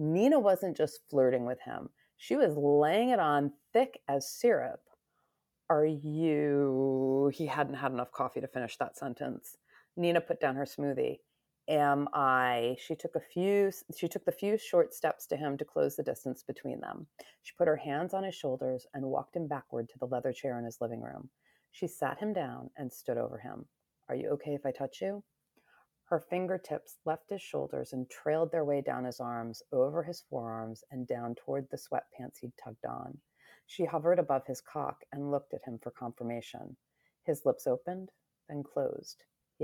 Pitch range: 130-170 Hz